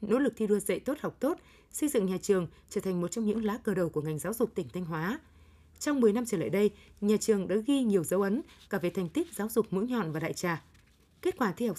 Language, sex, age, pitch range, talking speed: Vietnamese, female, 20-39, 185-230 Hz, 280 wpm